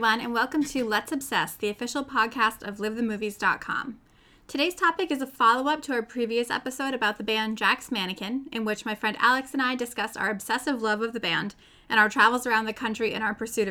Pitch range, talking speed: 220-250 Hz, 210 wpm